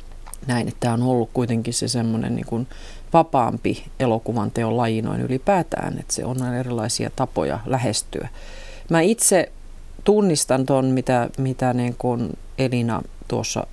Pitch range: 110-135 Hz